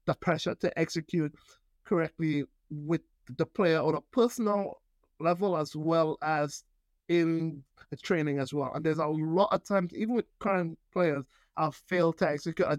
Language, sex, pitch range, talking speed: English, male, 145-185 Hz, 165 wpm